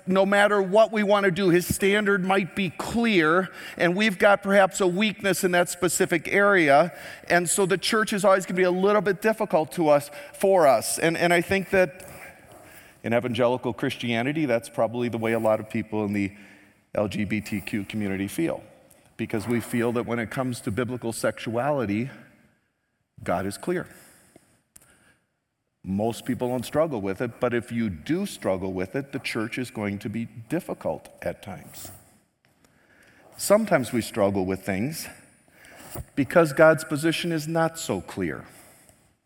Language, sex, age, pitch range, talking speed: English, male, 50-69, 120-190 Hz, 165 wpm